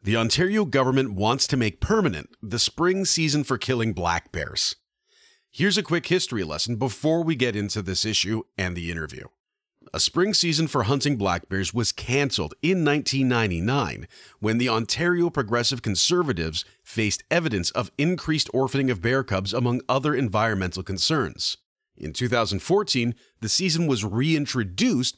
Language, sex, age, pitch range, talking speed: English, male, 40-59, 105-140 Hz, 150 wpm